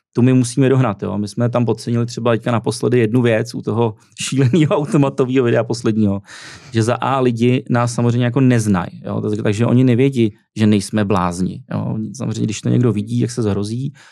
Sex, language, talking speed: male, Czech, 185 wpm